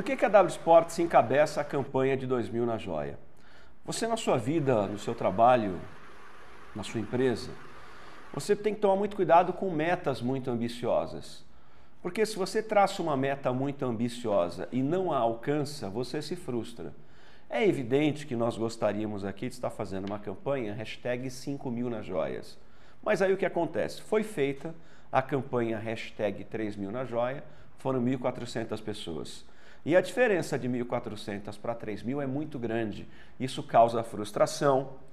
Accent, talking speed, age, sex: Brazilian, 160 wpm, 50-69, male